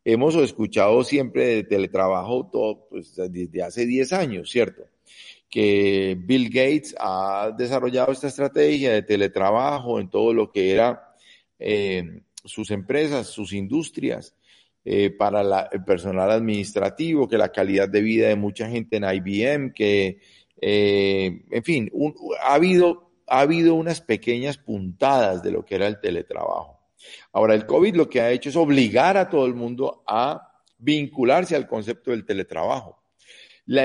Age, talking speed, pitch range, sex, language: 50-69, 150 wpm, 105-150 Hz, male, Spanish